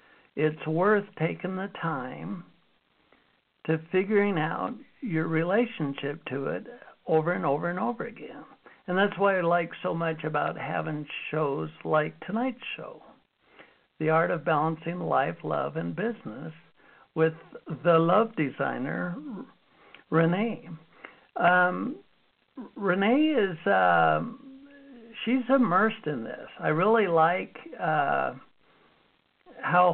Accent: American